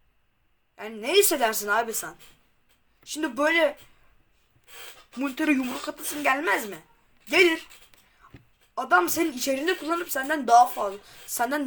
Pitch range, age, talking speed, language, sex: 205-280 Hz, 10-29, 110 wpm, Turkish, female